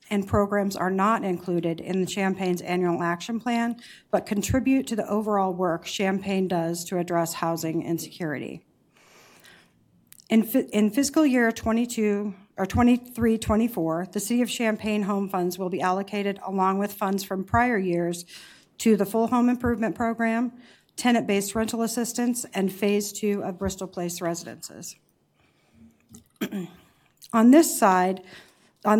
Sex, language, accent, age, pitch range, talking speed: female, English, American, 50-69, 185-220 Hz, 135 wpm